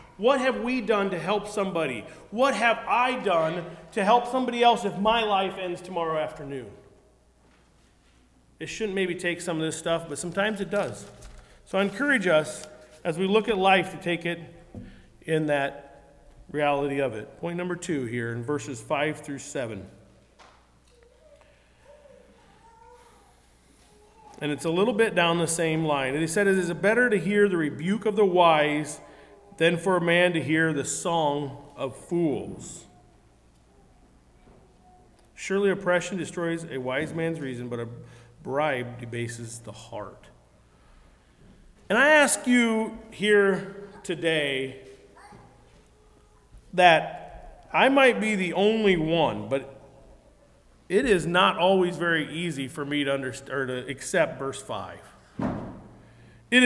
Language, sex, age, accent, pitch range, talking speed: English, male, 40-59, American, 135-200 Hz, 140 wpm